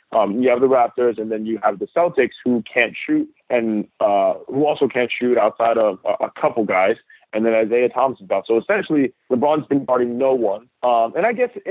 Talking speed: 215 wpm